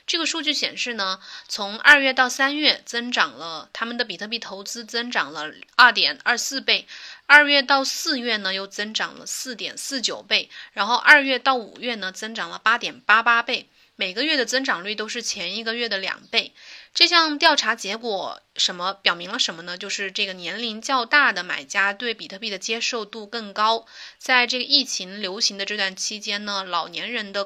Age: 20-39